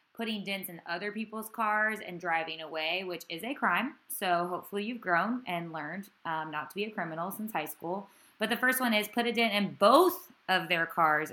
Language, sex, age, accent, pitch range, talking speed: English, female, 20-39, American, 170-215 Hz, 215 wpm